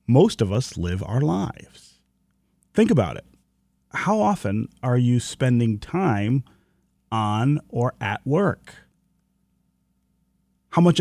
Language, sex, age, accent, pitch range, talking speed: English, male, 30-49, American, 105-150 Hz, 115 wpm